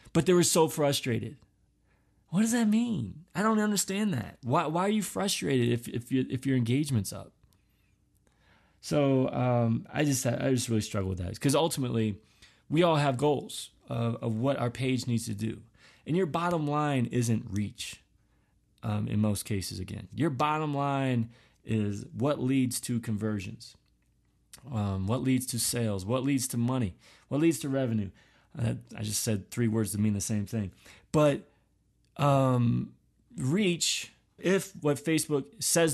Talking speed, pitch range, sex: 165 wpm, 110-150 Hz, male